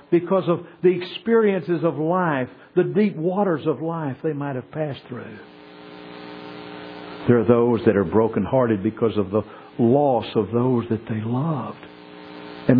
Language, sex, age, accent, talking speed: English, male, 60-79, American, 155 wpm